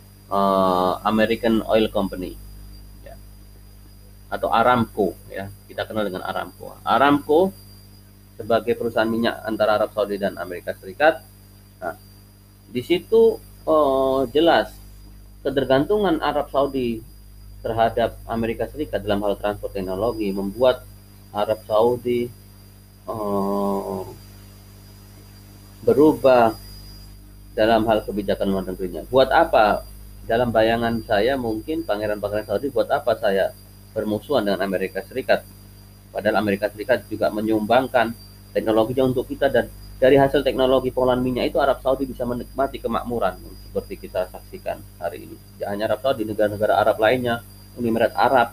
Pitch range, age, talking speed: 100-125 Hz, 30-49, 115 wpm